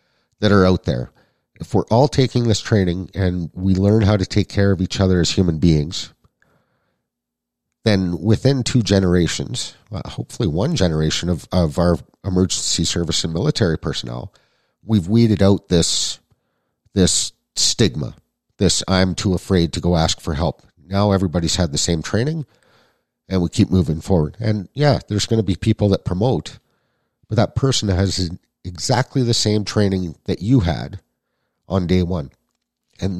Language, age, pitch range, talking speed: English, 50-69, 85-105 Hz, 160 wpm